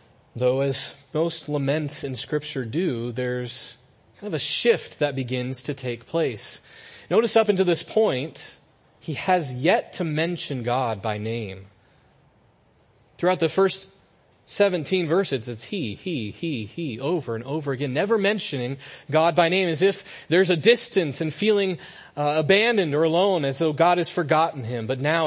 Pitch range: 125-180 Hz